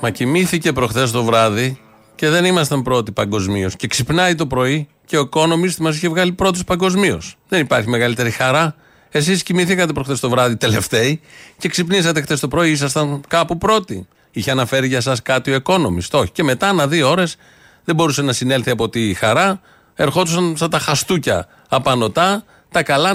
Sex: male